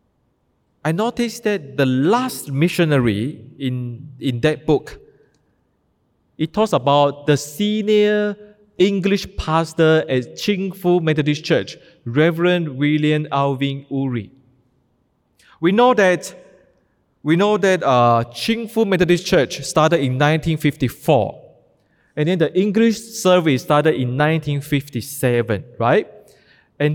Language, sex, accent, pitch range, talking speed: English, male, Malaysian, 130-185 Hz, 110 wpm